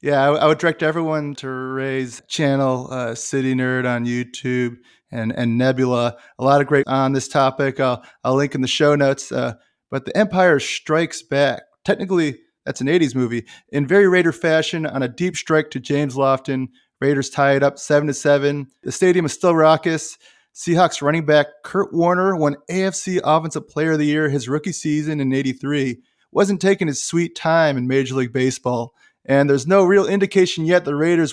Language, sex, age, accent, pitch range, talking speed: English, male, 30-49, American, 135-175 Hz, 190 wpm